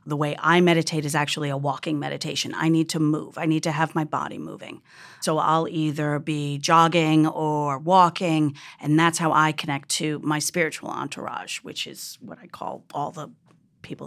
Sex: female